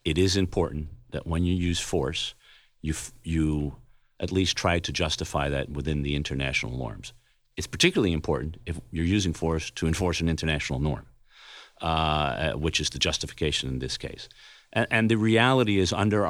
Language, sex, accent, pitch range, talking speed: English, male, American, 75-90 Hz, 175 wpm